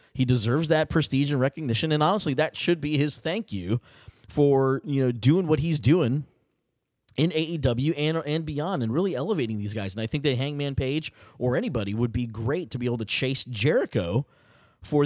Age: 30-49